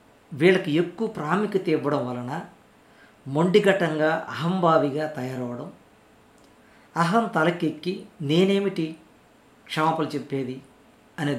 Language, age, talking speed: Telugu, 50-69, 75 wpm